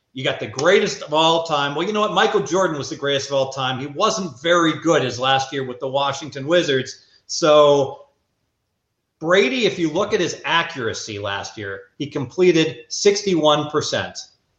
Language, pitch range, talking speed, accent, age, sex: English, 140-195 Hz, 175 wpm, American, 40-59, male